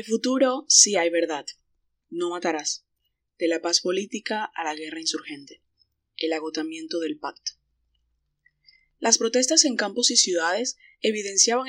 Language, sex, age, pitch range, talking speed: Spanish, female, 20-39, 180-250 Hz, 135 wpm